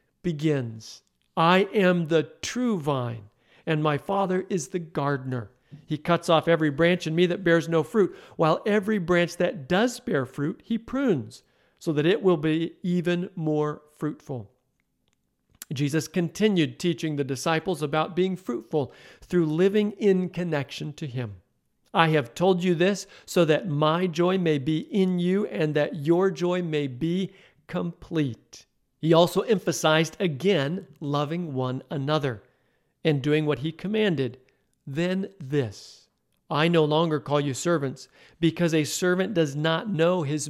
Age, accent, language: 50-69, American, English